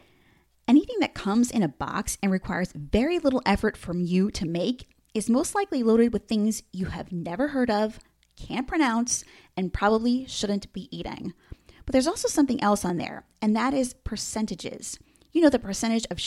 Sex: female